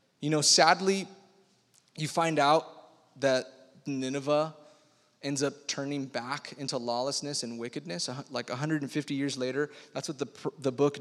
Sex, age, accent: male, 20-39, American